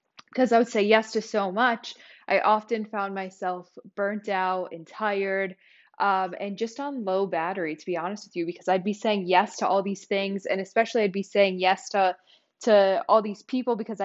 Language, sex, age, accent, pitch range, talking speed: English, female, 10-29, American, 180-210 Hz, 205 wpm